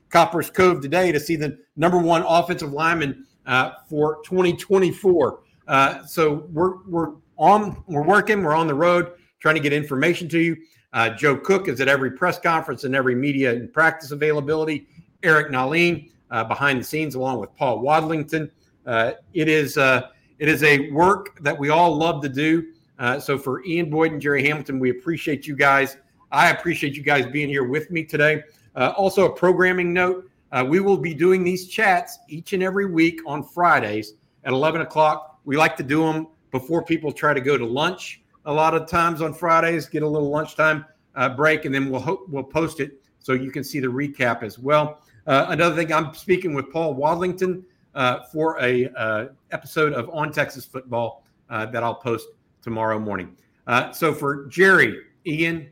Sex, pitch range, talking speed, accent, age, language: male, 135-170 Hz, 190 wpm, American, 50-69, English